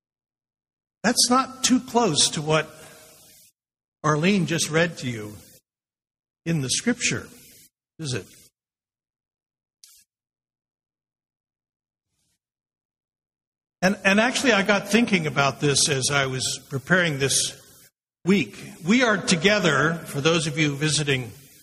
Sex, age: male, 60-79